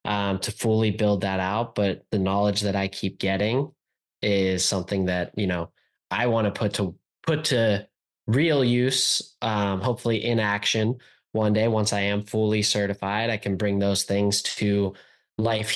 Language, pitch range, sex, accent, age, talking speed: English, 95-110 Hz, male, American, 20-39, 170 wpm